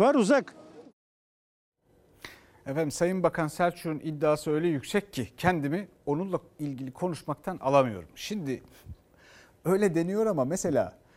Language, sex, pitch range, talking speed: Turkish, male, 150-215 Hz, 105 wpm